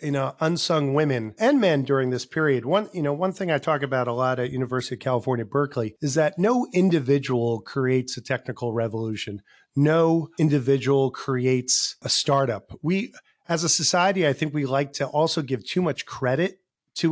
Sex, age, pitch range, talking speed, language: male, 40-59, 130-170 Hz, 180 wpm, English